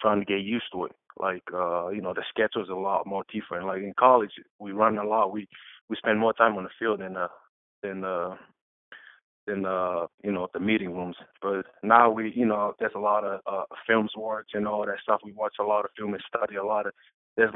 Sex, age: male, 20-39